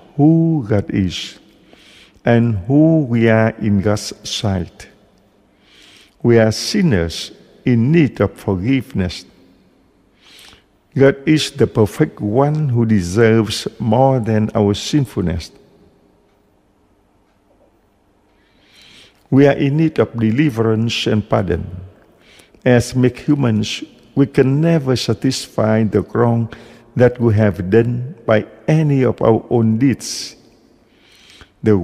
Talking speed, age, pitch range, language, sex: 105 wpm, 50-69, 105-135 Hz, English, male